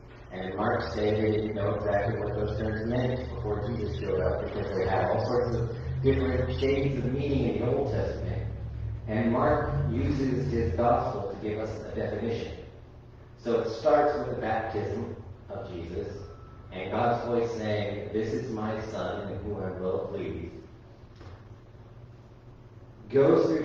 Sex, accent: male, American